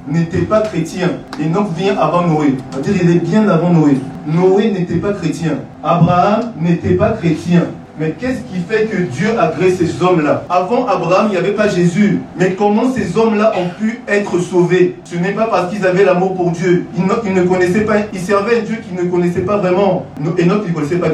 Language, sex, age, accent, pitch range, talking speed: French, male, 40-59, French, 170-205 Hz, 215 wpm